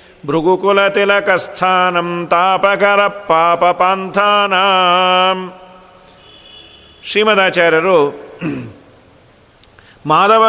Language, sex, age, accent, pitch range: Kannada, male, 50-69, native, 170-210 Hz